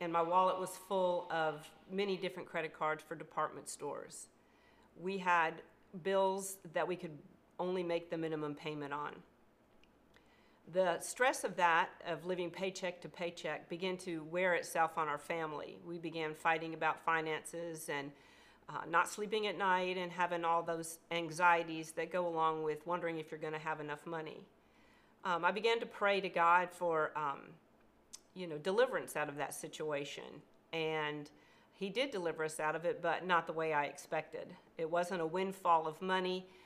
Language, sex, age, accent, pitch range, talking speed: English, female, 40-59, American, 160-180 Hz, 170 wpm